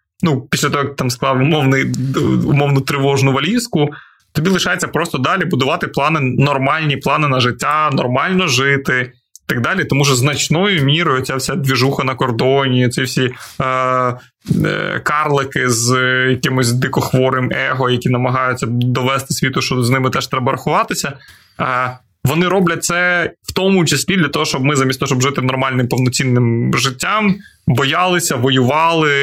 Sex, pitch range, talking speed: male, 130-155 Hz, 150 wpm